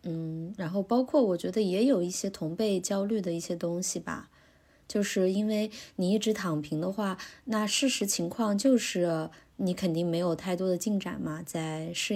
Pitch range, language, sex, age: 170-210 Hz, Chinese, female, 20-39